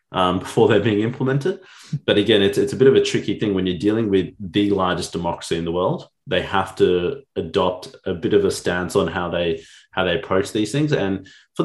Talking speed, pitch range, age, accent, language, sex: 225 wpm, 90-130 Hz, 30-49, Australian, English, male